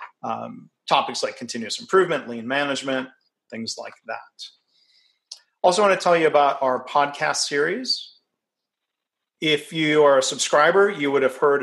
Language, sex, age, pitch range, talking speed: English, male, 40-59, 125-155 Hz, 145 wpm